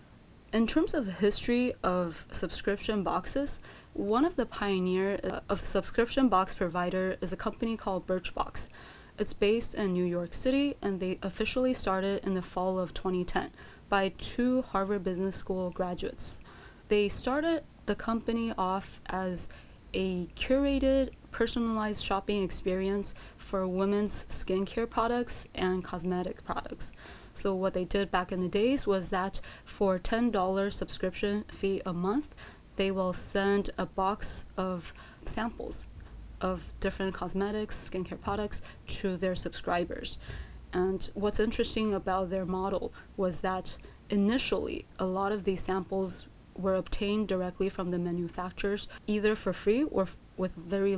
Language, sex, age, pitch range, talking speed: English, female, 20-39, 185-215 Hz, 140 wpm